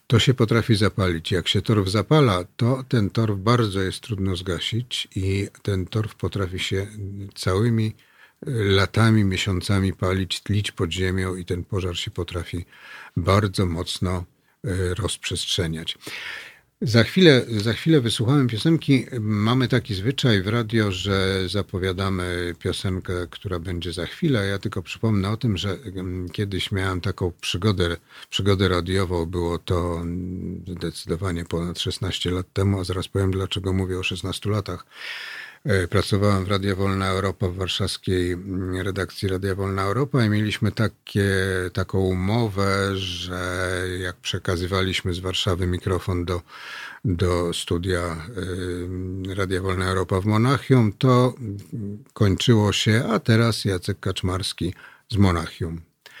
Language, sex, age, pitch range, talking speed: Polish, male, 50-69, 90-105 Hz, 125 wpm